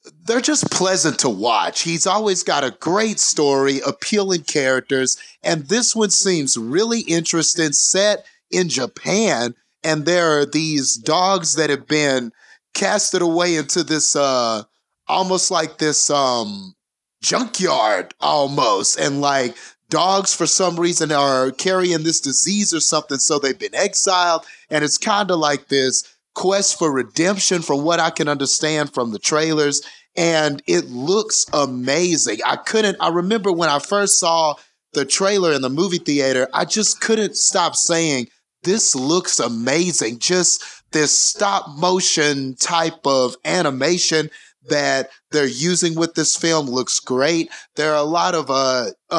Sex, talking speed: male, 150 wpm